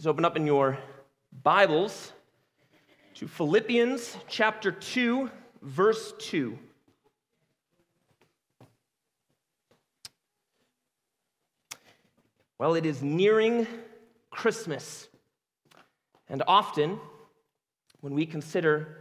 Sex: male